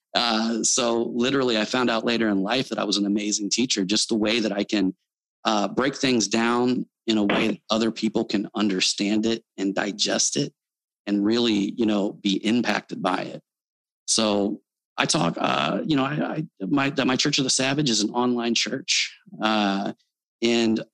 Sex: male